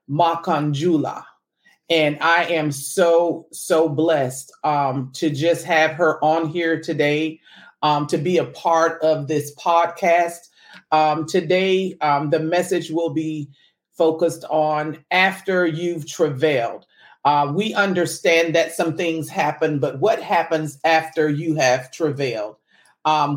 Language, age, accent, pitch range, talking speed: English, 40-59, American, 155-170 Hz, 130 wpm